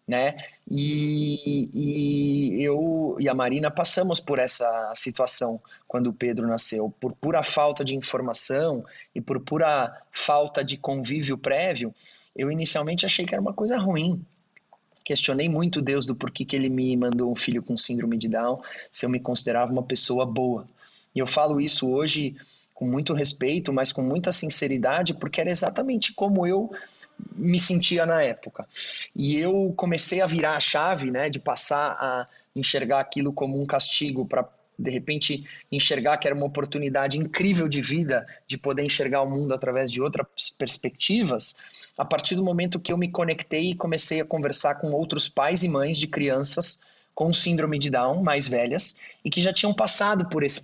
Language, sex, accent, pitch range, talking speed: Portuguese, male, Brazilian, 130-165 Hz, 175 wpm